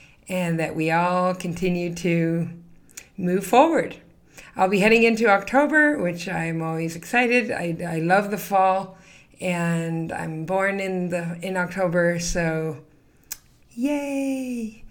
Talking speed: 120 wpm